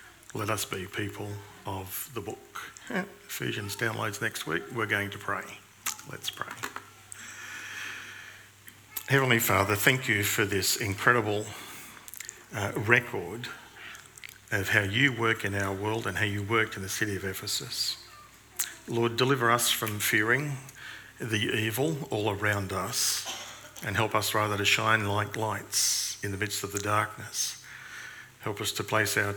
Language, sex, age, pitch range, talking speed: English, male, 50-69, 100-115 Hz, 145 wpm